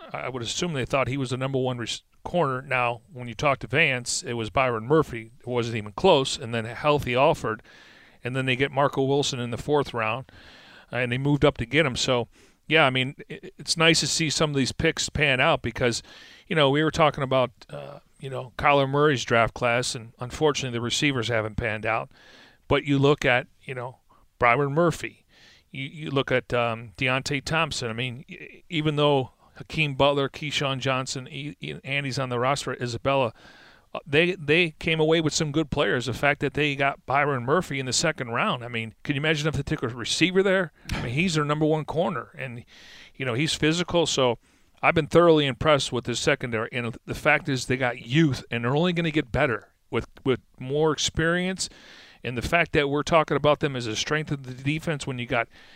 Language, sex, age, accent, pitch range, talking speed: English, male, 40-59, American, 125-150 Hz, 215 wpm